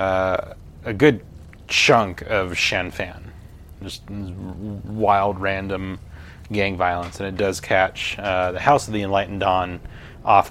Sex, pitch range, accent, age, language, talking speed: male, 90-100 Hz, American, 30-49, English, 135 wpm